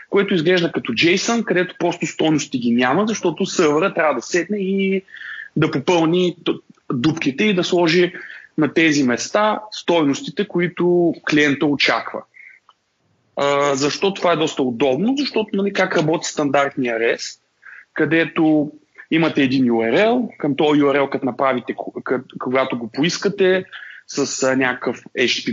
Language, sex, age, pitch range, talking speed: Bulgarian, male, 30-49, 140-175 Hz, 125 wpm